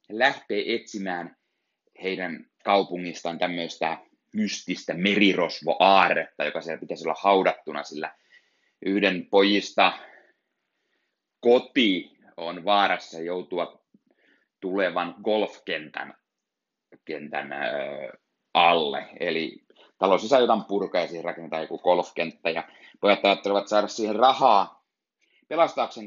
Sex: male